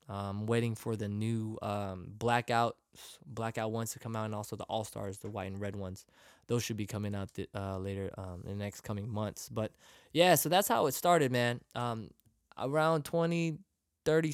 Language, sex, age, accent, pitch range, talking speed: English, male, 20-39, American, 105-130 Hz, 200 wpm